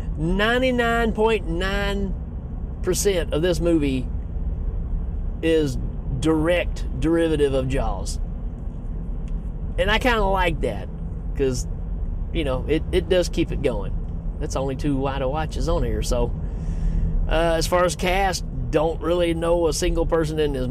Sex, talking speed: male, 130 wpm